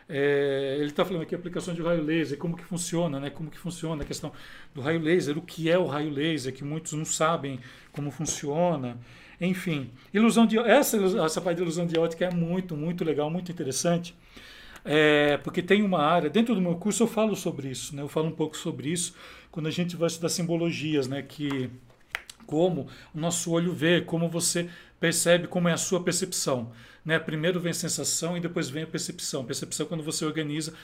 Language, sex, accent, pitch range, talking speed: Portuguese, male, Brazilian, 145-175 Hz, 195 wpm